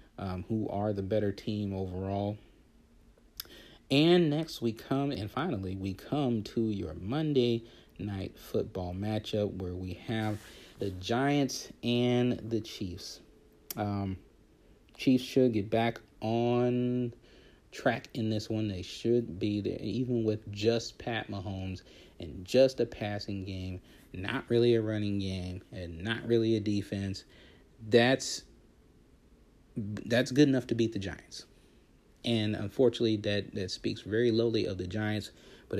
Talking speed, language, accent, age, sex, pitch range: 135 wpm, English, American, 40-59, male, 100-120 Hz